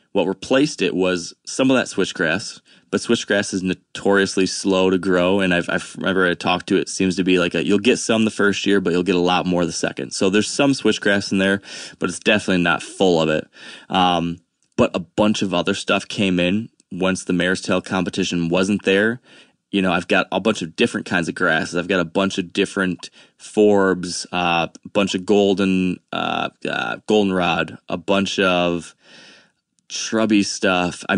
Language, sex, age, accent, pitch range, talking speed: English, male, 20-39, American, 90-100 Hz, 210 wpm